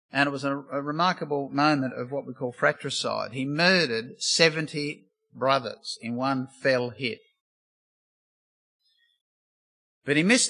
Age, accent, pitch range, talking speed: 50-69, Australian, 135-190 Hz, 125 wpm